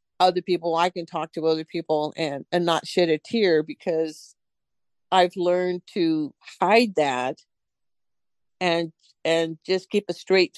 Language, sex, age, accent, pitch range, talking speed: English, female, 50-69, American, 155-175 Hz, 145 wpm